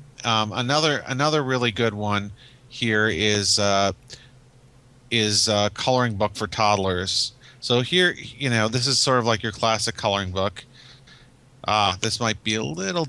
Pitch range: 100-125 Hz